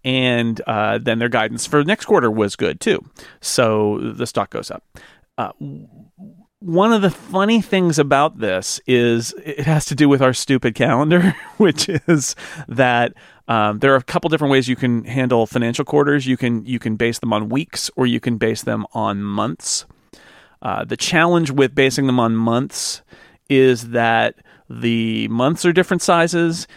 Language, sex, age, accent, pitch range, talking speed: English, male, 40-59, American, 115-145 Hz, 175 wpm